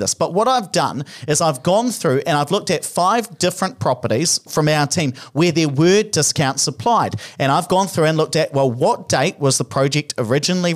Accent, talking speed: Australian, 210 wpm